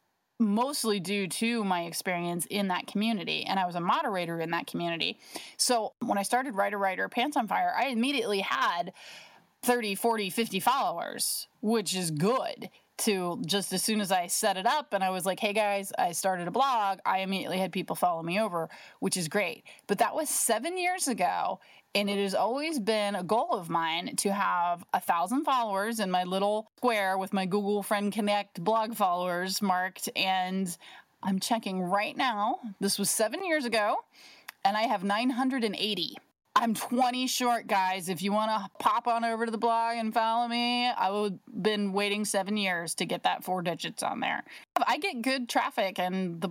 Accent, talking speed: American, 190 wpm